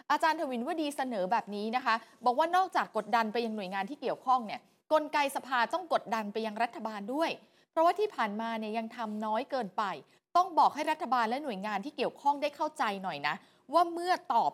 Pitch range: 220-290 Hz